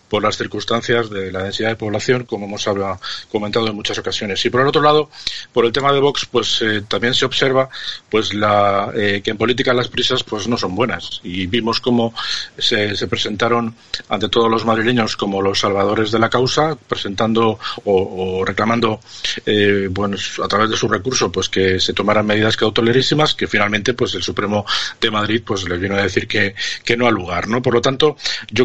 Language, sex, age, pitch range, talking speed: Spanish, male, 40-59, 100-120 Hz, 205 wpm